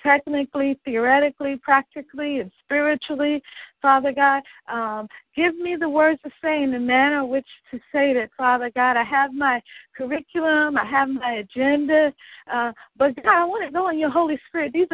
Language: English